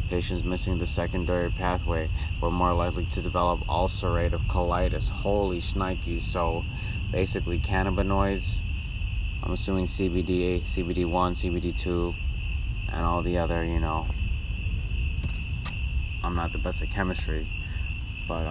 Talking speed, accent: 115 wpm, American